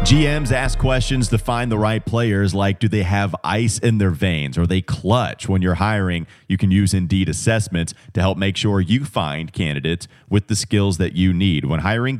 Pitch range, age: 90-110 Hz, 30-49